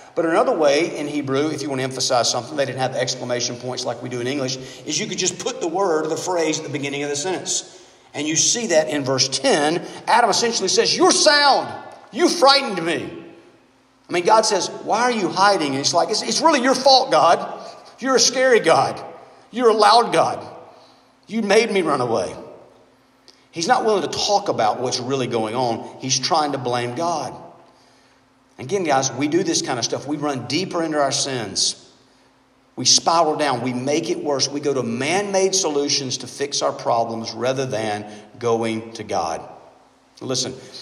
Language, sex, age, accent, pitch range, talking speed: English, male, 50-69, American, 130-185 Hz, 200 wpm